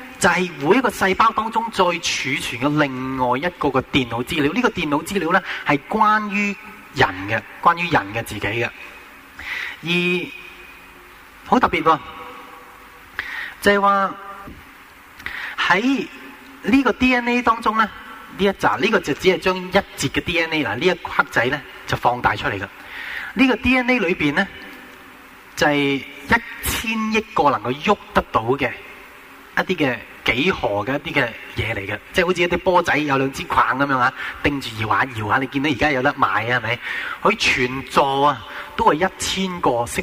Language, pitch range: Chinese, 140-205 Hz